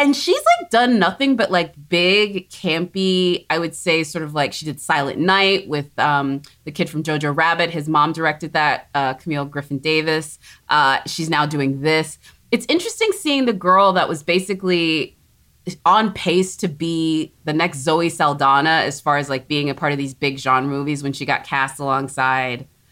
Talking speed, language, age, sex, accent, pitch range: 185 wpm, English, 20-39, female, American, 145-190 Hz